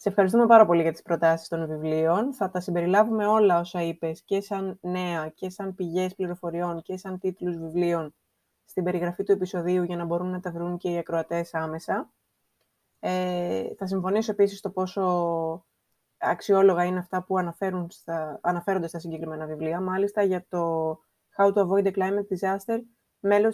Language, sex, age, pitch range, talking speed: Greek, female, 20-39, 175-205 Hz, 160 wpm